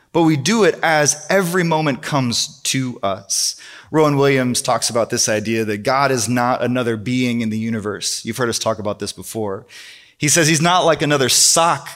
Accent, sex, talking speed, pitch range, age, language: American, male, 195 wpm, 115-160 Hz, 20-39, English